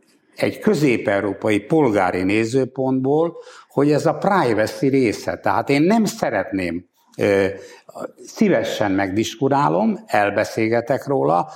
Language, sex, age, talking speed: Hungarian, male, 60-79, 90 wpm